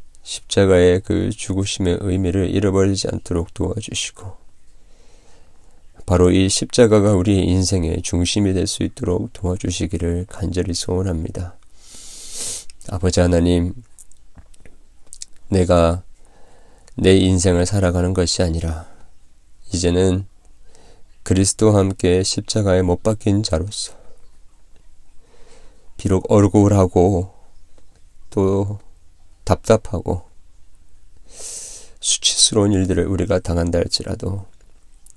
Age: 40-59